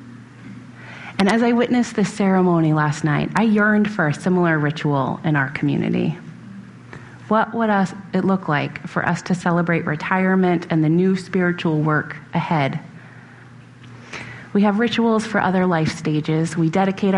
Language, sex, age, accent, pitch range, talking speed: English, female, 30-49, American, 165-230 Hz, 145 wpm